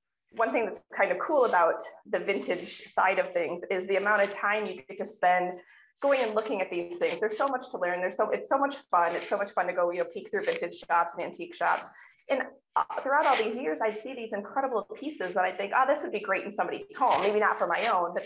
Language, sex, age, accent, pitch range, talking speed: English, female, 20-39, American, 185-285 Hz, 265 wpm